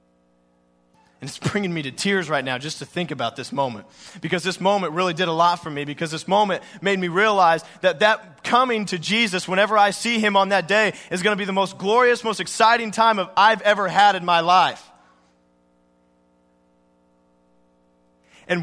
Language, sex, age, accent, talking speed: English, male, 20-39, American, 190 wpm